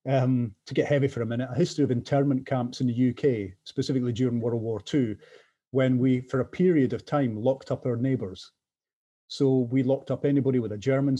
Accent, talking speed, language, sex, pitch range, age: British, 210 wpm, English, male, 120-145 Hz, 40-59